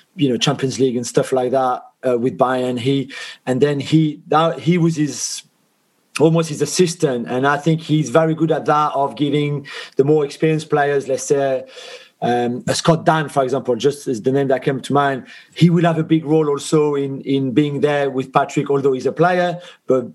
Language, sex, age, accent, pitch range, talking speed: English, male, 40-59, French, 140-160 Hz, 205 wpm